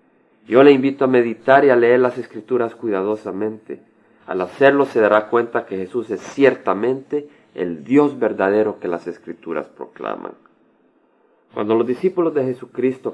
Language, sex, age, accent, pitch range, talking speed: Spanish, male, 40-59, Mexican, 105-130 Hz, 145 wpm